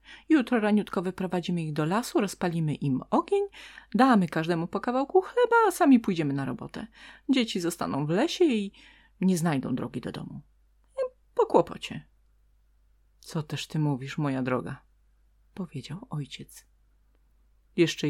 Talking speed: 135 wpm